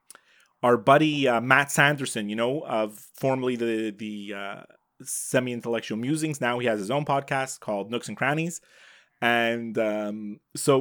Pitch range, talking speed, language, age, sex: 120-155 Hz, 150 wpm, English, 30-49, male